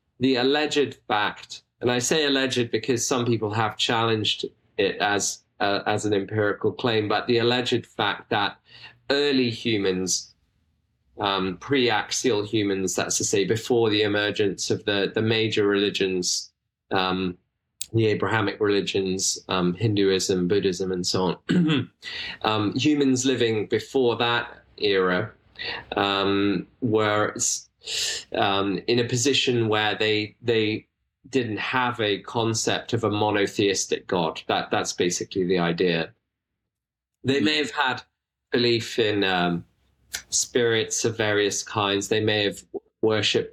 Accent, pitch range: British, 100-120 Hz